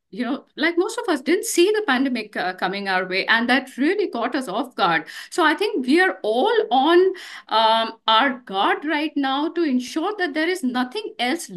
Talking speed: 200 wpm